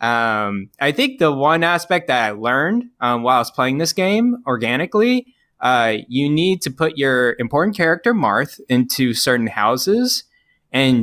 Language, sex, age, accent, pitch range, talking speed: English, male, 20-39, American, 115-150 Hz, 165 wpm